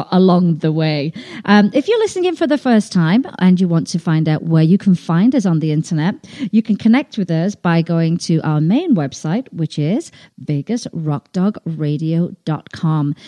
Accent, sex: British, female